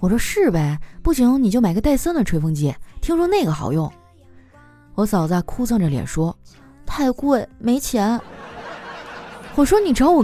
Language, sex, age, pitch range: Chinese, female, 20-39, 180-260 Hz